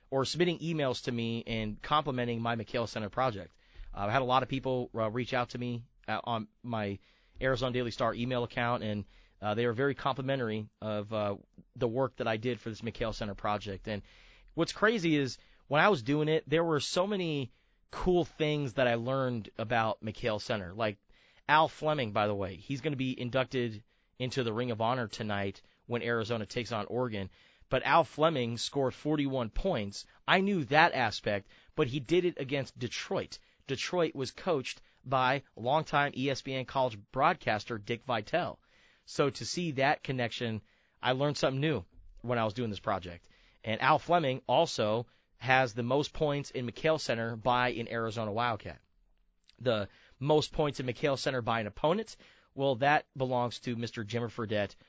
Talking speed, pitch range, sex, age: 180 wpm, 110-140 Hz, male, 30-49